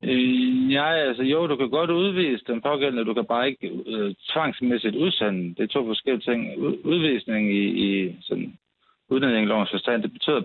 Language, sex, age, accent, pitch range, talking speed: Danish, male, 60-79, native, 100-130 Hz, 170 wpm